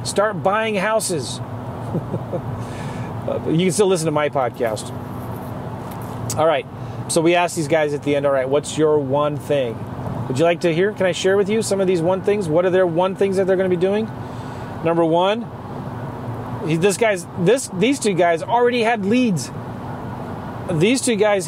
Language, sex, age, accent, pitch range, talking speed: English, male, 30-49, American, 135-185 Hz, 175 wpm